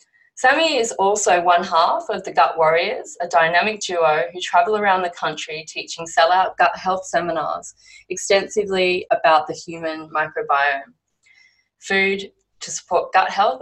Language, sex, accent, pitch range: English, female, Australian, 160-225 Hz